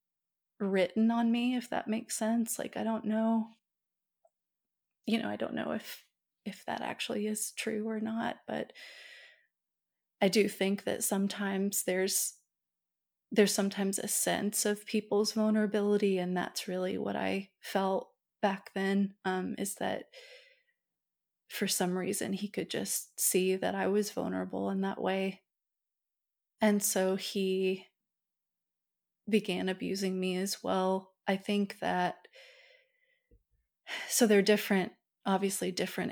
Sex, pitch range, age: female, 190-215 Hz, 30-49